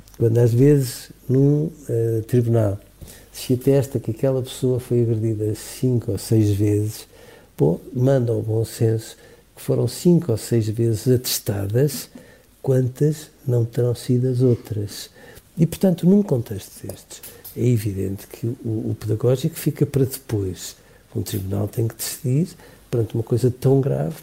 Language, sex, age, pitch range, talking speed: Portuguese, male, 60-79, 110-130 Hz, 140 wpm